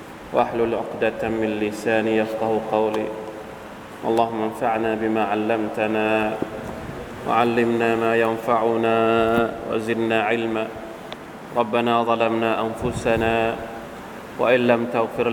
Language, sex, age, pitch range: Thai, male, 20-39, 110-120 Hz